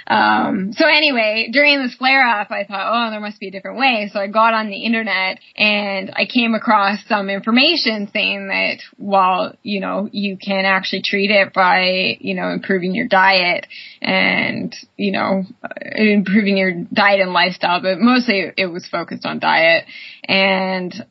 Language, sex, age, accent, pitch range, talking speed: English, female, 10-29, American, 195-240 Hz, 170 wpm